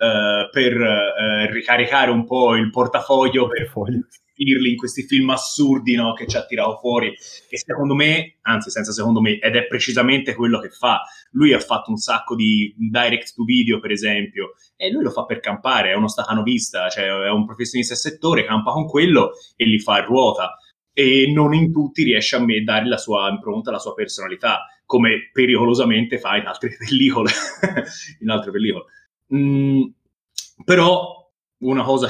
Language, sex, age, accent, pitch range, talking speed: Italian, male, 20-39, native, 115-140 Hz, 175 wpm